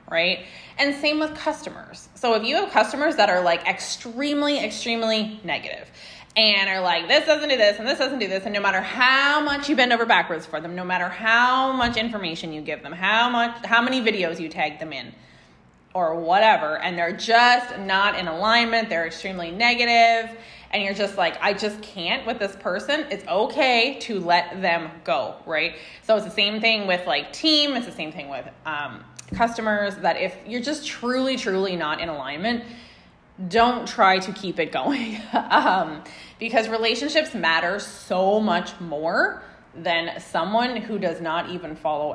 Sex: female